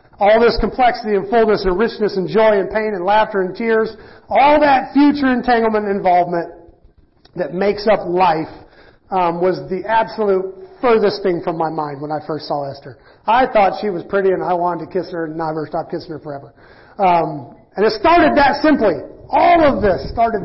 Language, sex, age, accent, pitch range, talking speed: English, male, 40-59, American, 170-220 Hz, 195 wpm